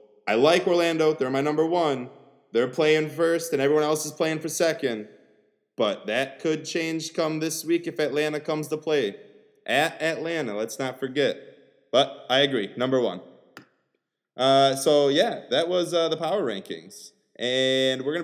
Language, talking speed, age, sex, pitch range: English, 170 wpm, 20-39, male, 125-160 Hz